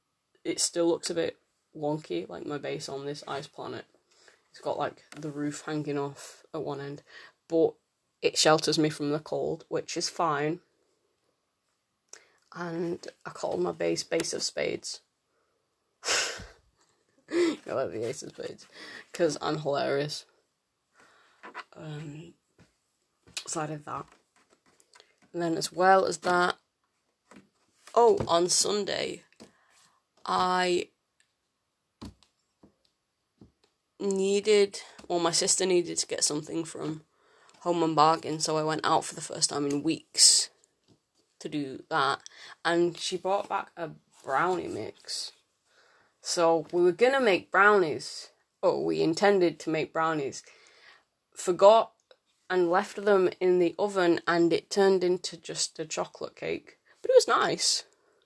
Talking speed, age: 135 wpm, 20-39